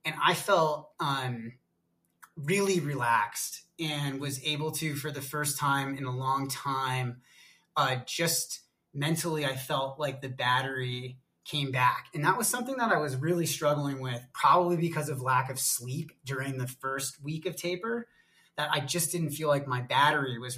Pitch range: 130-155 Hz